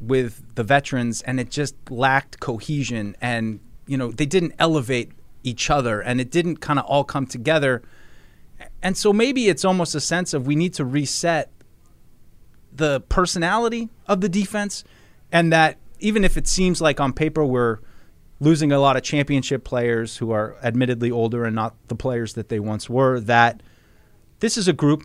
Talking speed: 175 wpm